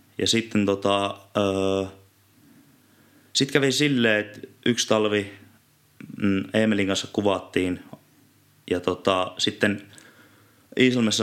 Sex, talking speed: male, 95 wpm